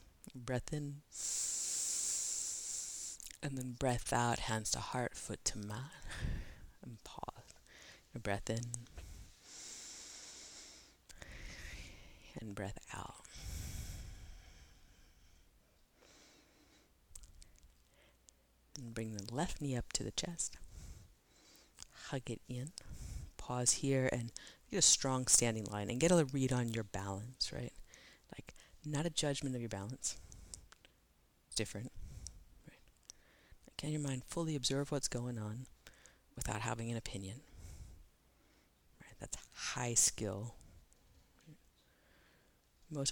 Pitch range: 100-130 Hz